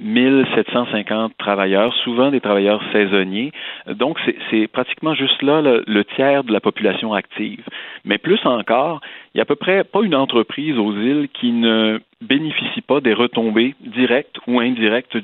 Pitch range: 100-130 Hz